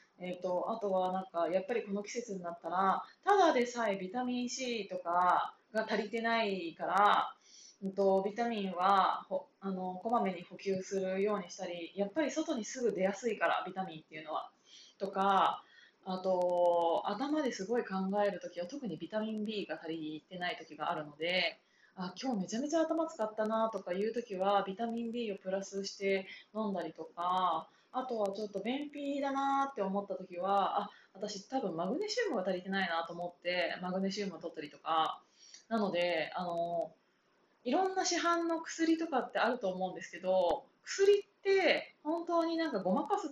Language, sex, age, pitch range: Japanese, female, 20-39, 185-245 Hz